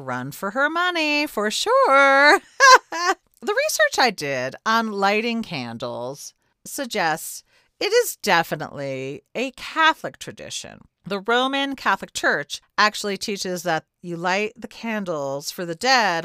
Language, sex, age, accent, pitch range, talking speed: English, female, 40-59, American, 170-235 Hz, 125 wpm